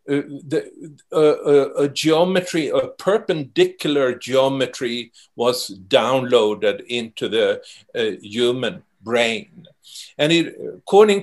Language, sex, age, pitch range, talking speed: English, male, 60-79, 135-180 Hz, 100 wpm